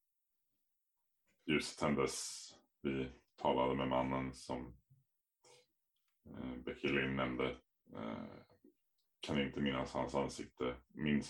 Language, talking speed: Swedish, 95 wpm